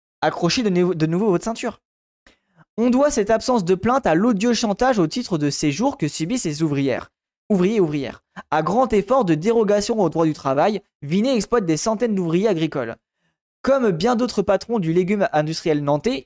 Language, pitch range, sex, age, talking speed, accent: French, 160-235 Hz, male, 20-39, 180 wpm, French